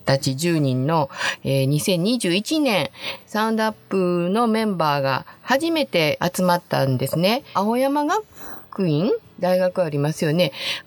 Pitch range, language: 165-235 Hz, Japanese